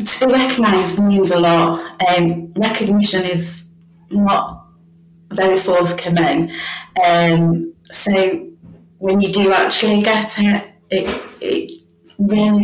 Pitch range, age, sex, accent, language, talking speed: 170-210 Hz, 30-49, female, British, English, 110 wpm